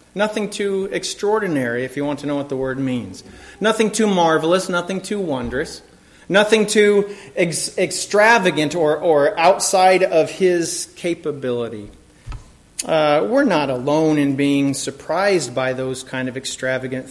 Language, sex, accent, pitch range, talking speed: English, male, American, 135-170 Hz, 135 wpm